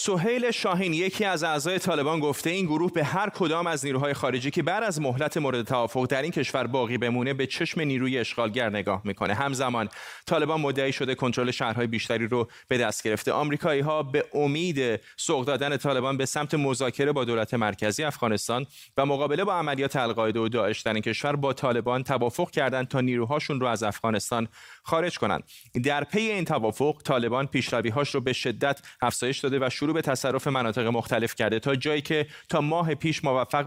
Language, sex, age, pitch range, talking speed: Persian, male, 30-49, 120-150 Hz, 180 wpm